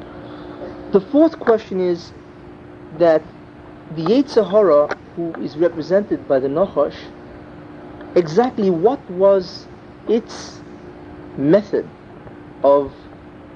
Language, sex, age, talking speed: English, male, 50-69, 90 wpm